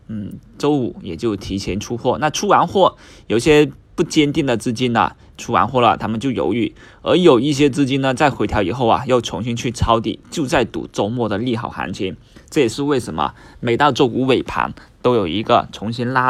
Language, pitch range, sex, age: Chinese, 110-135 Hz, male, 20-39